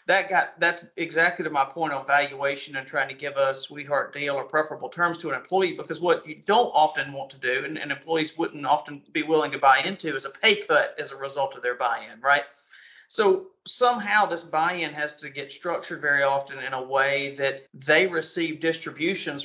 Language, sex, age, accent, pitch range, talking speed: English, male, 40-59, American, 140-175 Hz, 215 wpm